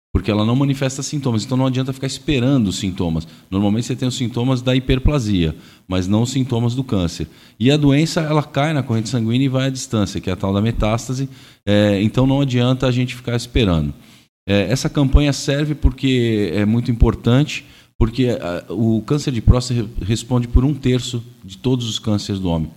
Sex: male